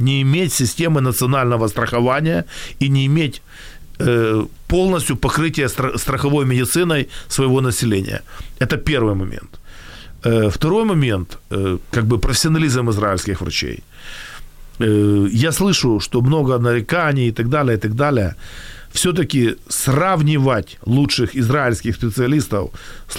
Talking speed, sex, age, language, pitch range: 105 wpm, male, 40-59, Ukrainian, 110-140 Hz